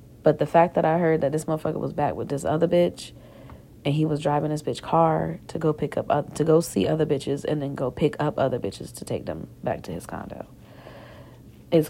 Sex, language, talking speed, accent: female, English, 235 wpm, American